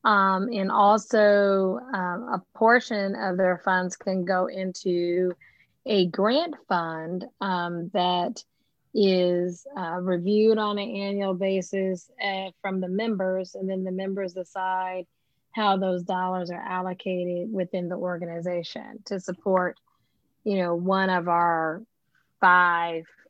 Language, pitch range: English, 180-200 Hz